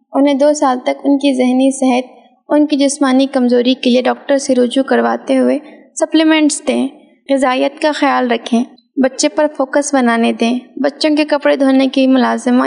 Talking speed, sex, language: 170 wpm, female, Urdu